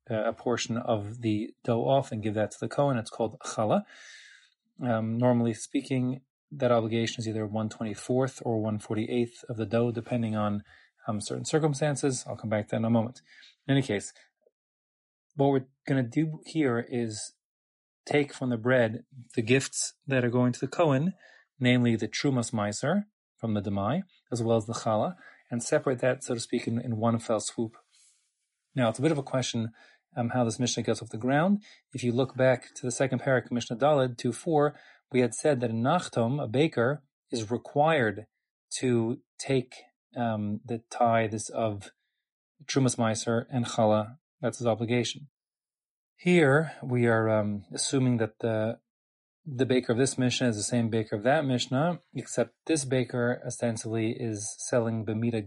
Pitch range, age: 115-135 Hz, 30-49